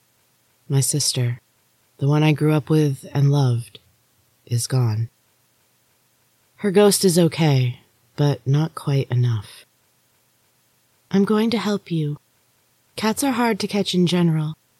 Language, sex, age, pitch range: English, female, 30-49, 130-175 Hz